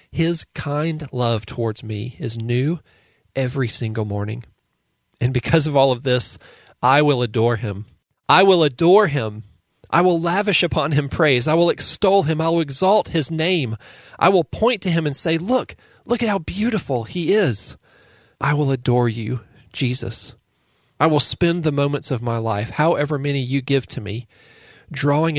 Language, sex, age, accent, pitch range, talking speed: English, male, 40-59, American, 115-155 Hz, 175 wpm